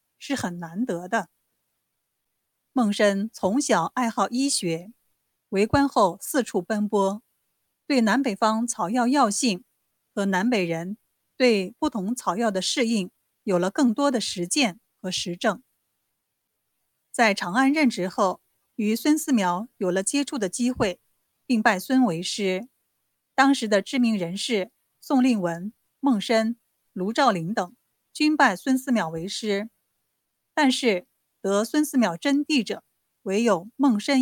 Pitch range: 195-255 Hz